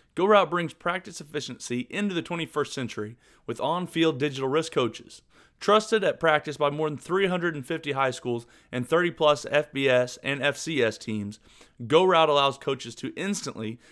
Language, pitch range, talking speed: English, 120-155 Hz, 140 wpm